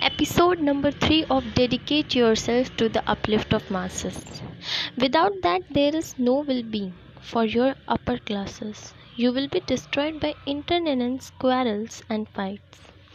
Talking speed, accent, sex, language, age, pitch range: 135 wpm, Indian, female, English, 10-29, 225-280 Hz